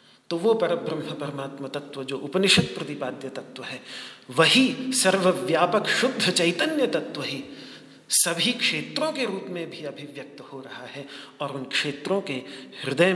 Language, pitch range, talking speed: Hindi, 130-185 Hz, 145 wpm